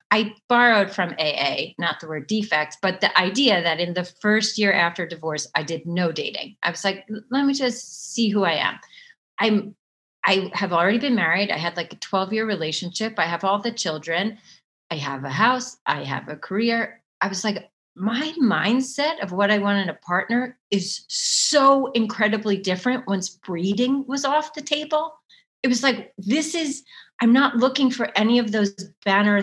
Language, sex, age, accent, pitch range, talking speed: English, female, 30-49, American, 185-245 Hz, 190 wpm